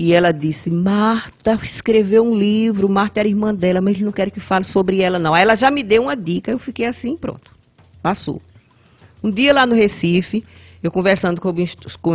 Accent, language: Brazilian, Portuguese